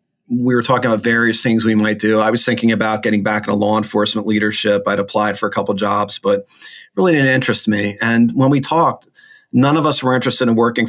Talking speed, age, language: 230 wpm, 40-59, English